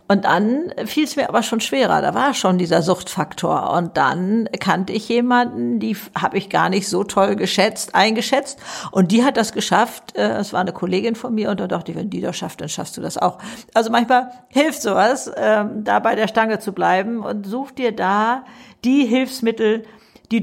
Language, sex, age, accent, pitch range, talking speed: German, female, 60-79, German, 190-250 Hz, 200 wpm